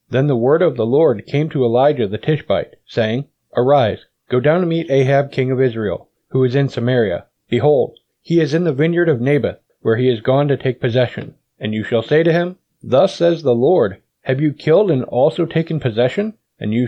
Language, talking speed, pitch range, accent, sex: English, 210 wpm, 125-150 Hz, American, male